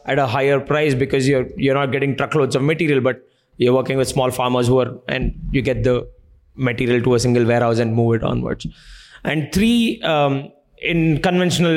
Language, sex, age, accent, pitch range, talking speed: English, male, 20-39, Indian, 130-165 Hz, 195 wpm